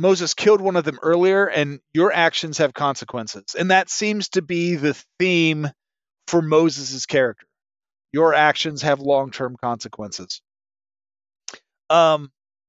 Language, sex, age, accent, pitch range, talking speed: English, male, 40-59, American, 120-190 Hz, 130 wpm